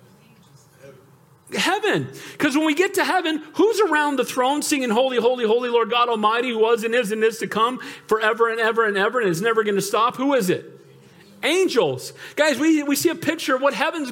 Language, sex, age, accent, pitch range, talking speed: English, male, 40-59, American, 185-275 Hz, 215 wpm